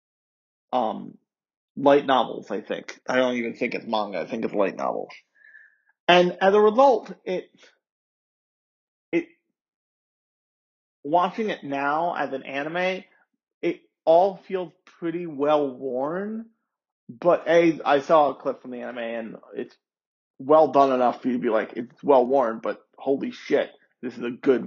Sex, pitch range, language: male, 135-180 Hz, English